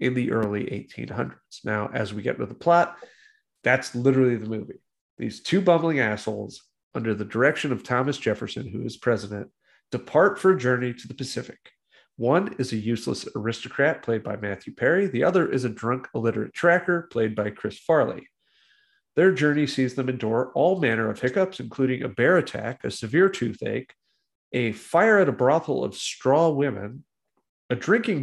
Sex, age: male, 40-59